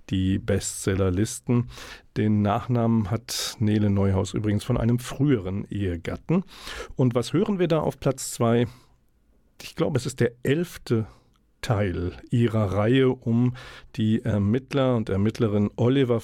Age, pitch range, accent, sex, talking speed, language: 50-69, 105-130 Hz, German, male, 130 wpm, German